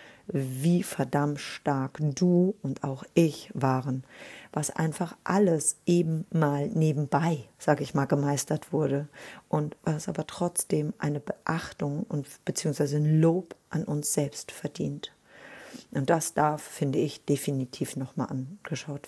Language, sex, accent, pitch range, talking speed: German, female, German, 145-175 Hz, 130 wpm